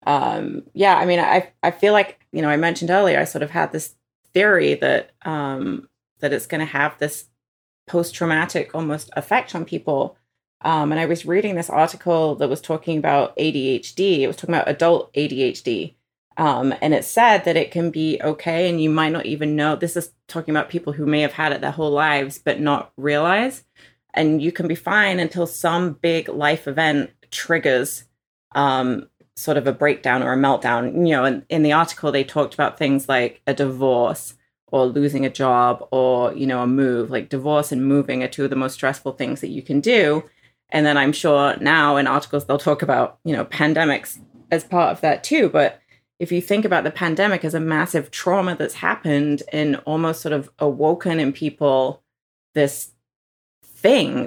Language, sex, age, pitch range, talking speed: English, female, 30-49, 140-170 Hz, 200 wpm